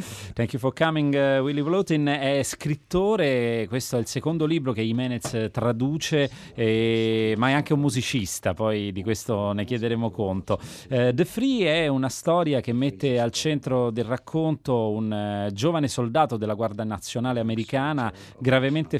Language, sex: Italian, male